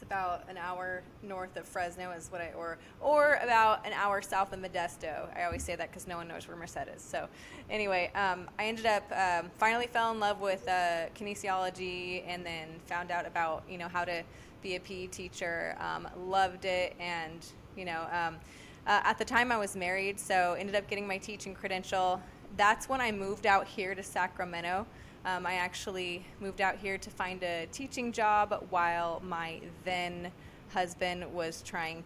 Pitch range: 175-205 Hz